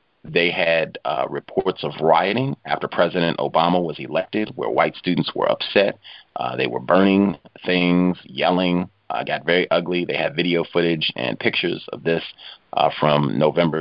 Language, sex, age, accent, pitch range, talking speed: English, male, 40-59, American, 75-90 Hz, 160 wpm